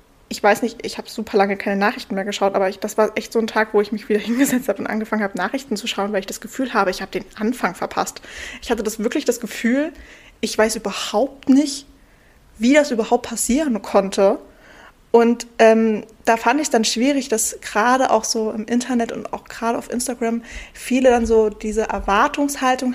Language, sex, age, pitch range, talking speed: German, female, 20-39, 200-240 Hz, 205 wpm